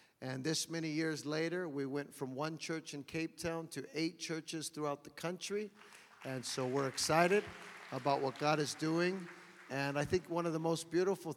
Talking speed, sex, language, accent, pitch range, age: 190 wpm, male, English, American, 135-160 Hz, 50-69